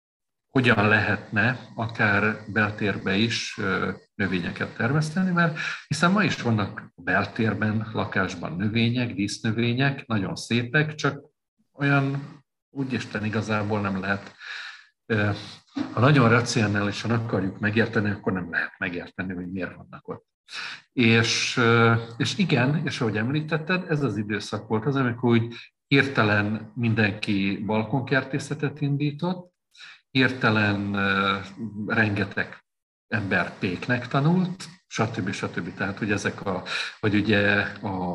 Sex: male